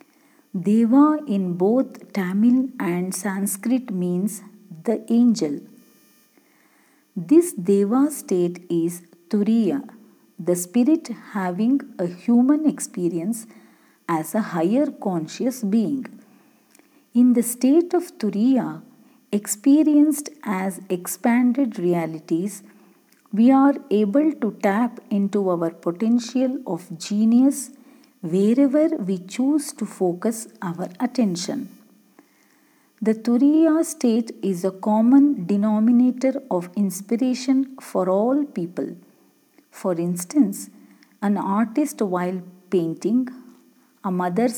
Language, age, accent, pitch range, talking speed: Kannada, 50-69, native, 190-260 Hz, 95 wpm